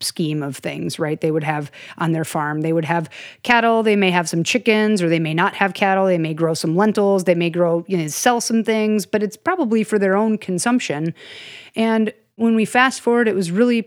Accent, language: American, English